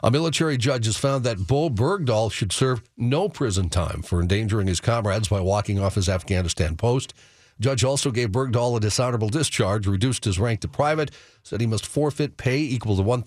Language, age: English, 50-69